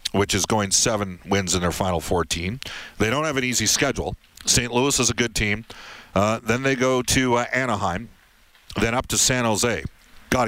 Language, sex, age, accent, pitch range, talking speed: English, male, 50-69, American, 100-120 Hz, 195 wpm